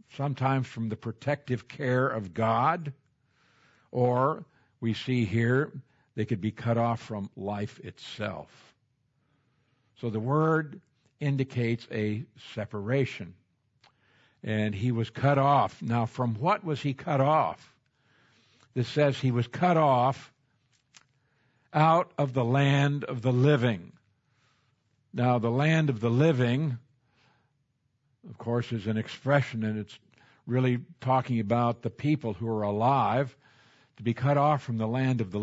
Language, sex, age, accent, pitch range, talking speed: English, male, 60-79, American, 115-140 Hz, 135 wpm